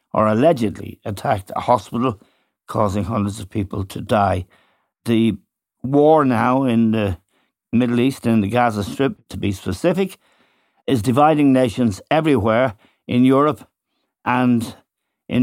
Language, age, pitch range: English, 60-79, 105-130 Hz